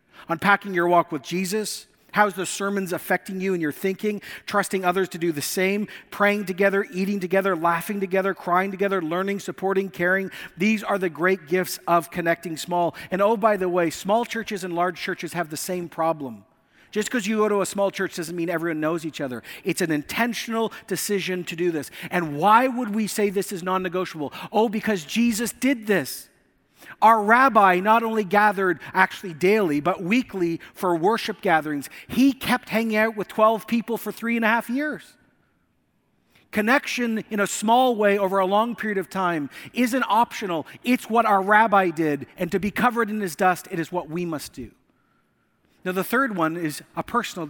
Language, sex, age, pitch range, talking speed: English, male, 50-69, 175-215 Hz, 190 wpm